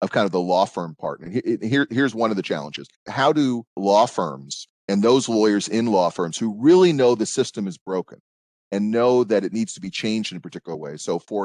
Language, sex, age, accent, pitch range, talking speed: English, male, 40-59, American, 90-115 Hz, 235 wpm